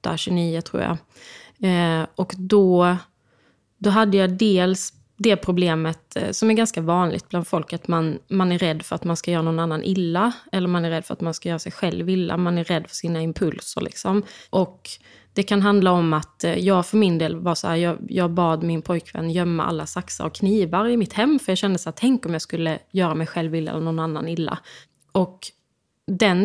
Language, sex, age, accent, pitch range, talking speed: English, female, 20-39, Swedish, 165-190 Hz, 215 wpm